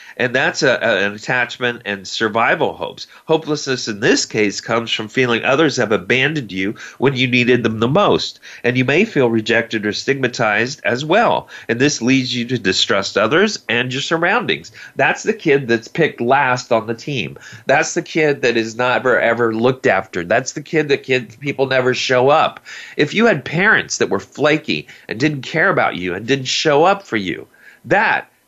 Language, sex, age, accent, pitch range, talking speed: English, male, 40-59, American, 115-140 Hz, 190 wpm